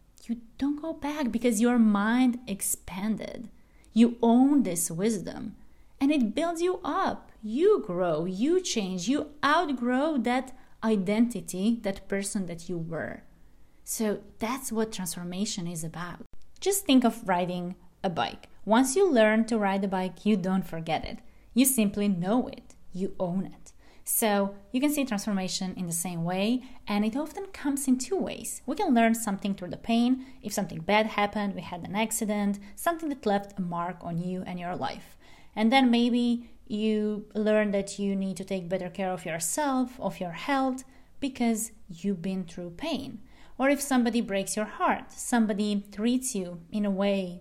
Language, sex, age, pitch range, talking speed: English, female, 30-49, 190-255 Hz, 170 wpm